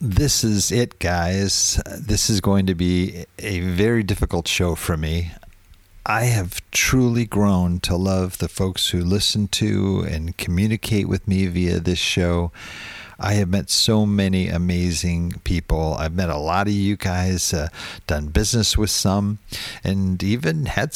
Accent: American